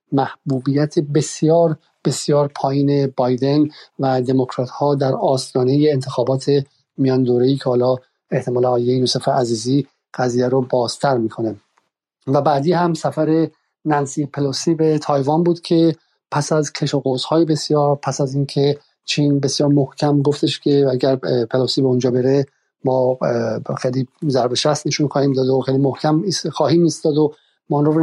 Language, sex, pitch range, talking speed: Persian, male, 130-155 Hz, 135 wpm